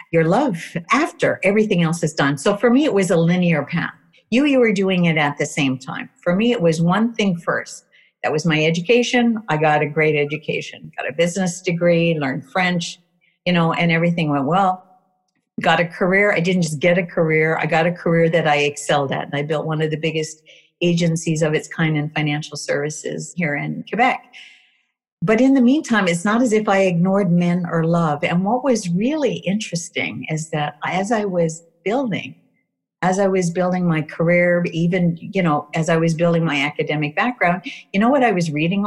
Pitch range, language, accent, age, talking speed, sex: 160-205 Hz, English, American, 50-69, 205 wpm, female